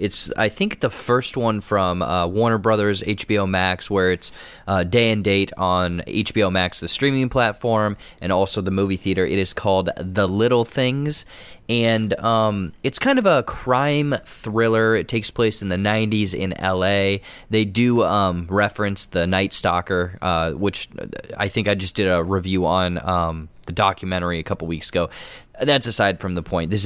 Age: 20-39